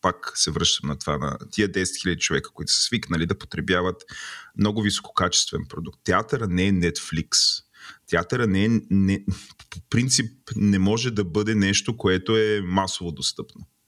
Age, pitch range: 30-49, 90-110 Hz